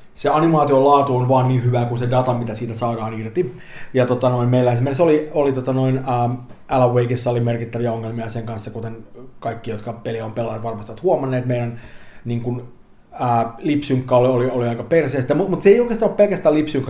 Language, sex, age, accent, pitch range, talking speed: Finnish, male, 30-49, native, 120-135 Hz, 190 wpm